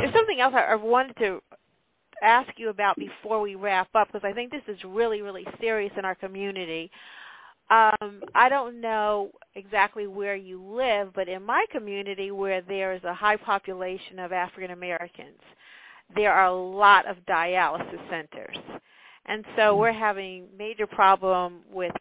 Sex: female